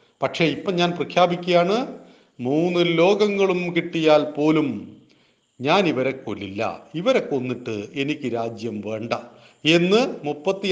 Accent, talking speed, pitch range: native, 95 wpm, 140-195 Hz